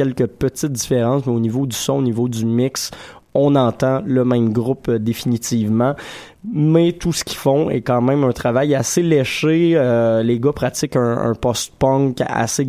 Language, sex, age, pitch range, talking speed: French, male, 20-39, 120-140 Hz, 185 wpm